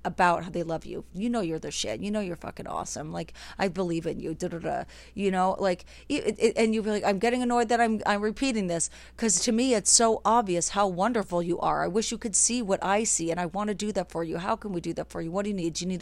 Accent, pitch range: American, 175-215 Hz